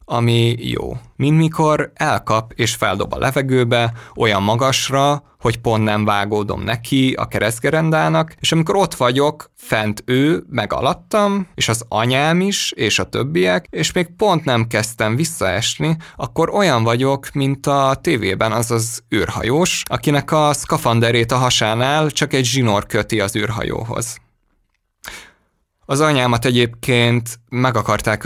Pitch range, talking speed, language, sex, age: 110-150 Hz, 135 wpm, Hungarian, male, 20-39